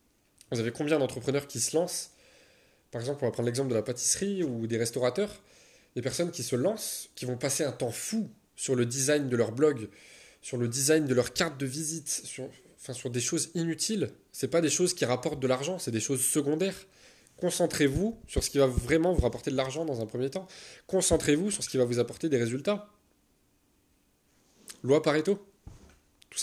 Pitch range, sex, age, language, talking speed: 120-155 Hz, male, 20-39, French, 200 wpm